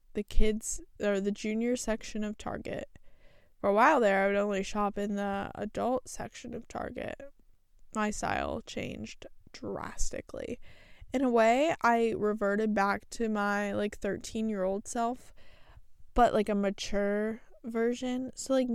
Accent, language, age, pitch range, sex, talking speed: American, English, 10-29, 205-250 Hz, female, 145 wpm